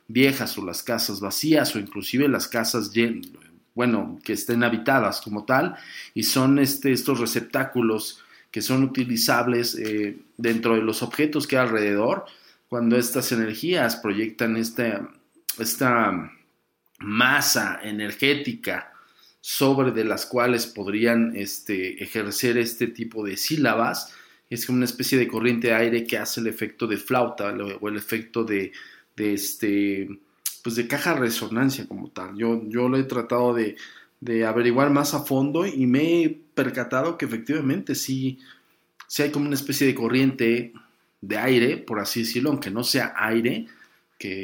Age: 40-59